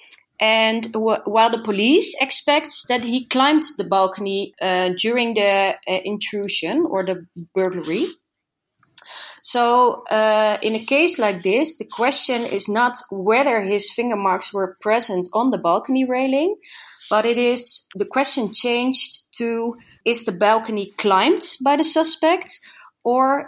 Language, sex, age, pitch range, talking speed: English, female, 30-49, 215-275 Hz, 140 wpm